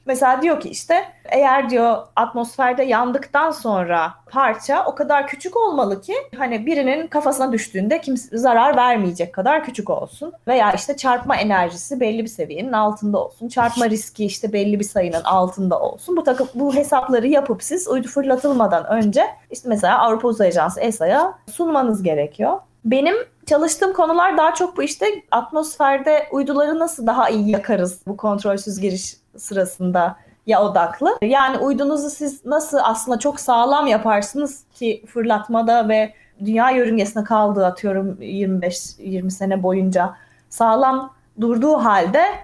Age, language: 30-49, Turkish